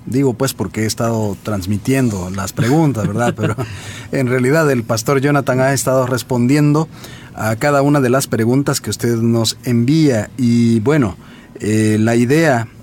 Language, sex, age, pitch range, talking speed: Spanish, male, 40-59, 110-140 Hz, 155 wpm